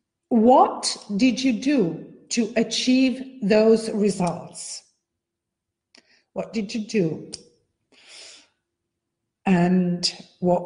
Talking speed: 80 wpm